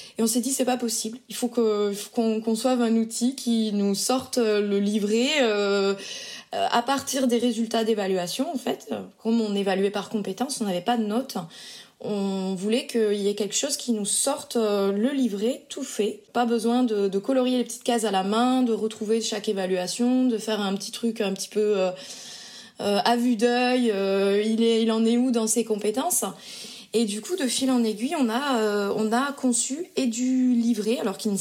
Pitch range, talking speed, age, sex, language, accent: 200-245 Hz, 210 wpm, 20-39, female, French, French